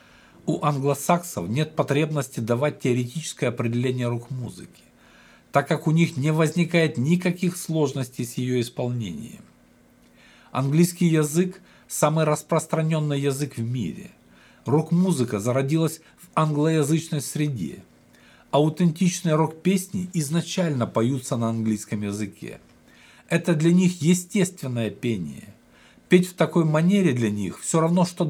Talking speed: 110 wpm